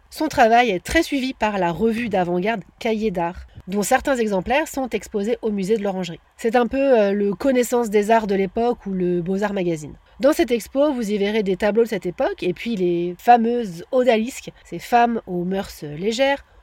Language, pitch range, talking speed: French, 185-250 Hz, 195 wpm